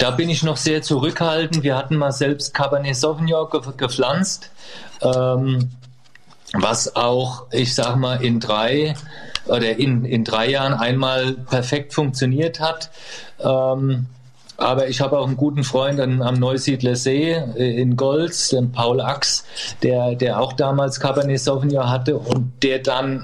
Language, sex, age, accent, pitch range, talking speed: German, male, 40-59, German, 125-140 Hz, 145 wpm